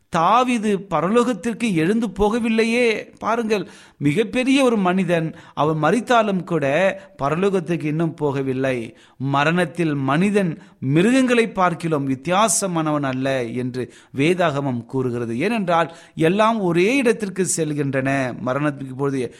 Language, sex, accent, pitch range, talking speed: Tamil, male, native, 145-205 Hz, 95 wpm